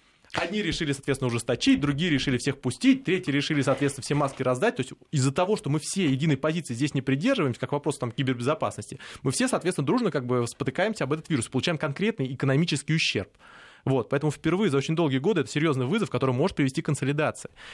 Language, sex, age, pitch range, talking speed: Russian, male, 20-39, 125-165 Hz, 200 wpm